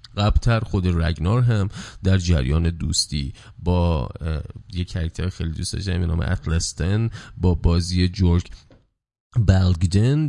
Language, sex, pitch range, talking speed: Persian, male, 85-110 Hz, 110 wpm